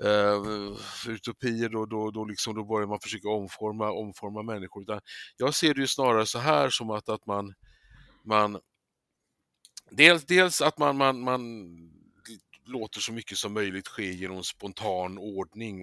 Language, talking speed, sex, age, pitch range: Swedish, 150 wpm, male, 50-69, 100-120 Hz